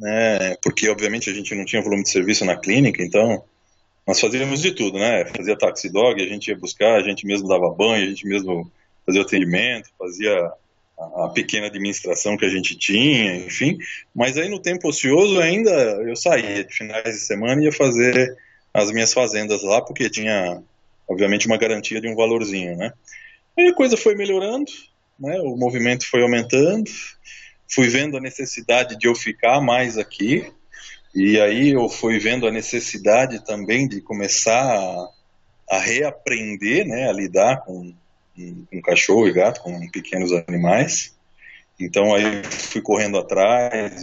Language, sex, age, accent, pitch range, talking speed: English, male, 20-39, Brazilian, 100-130 Hz, 160 wpm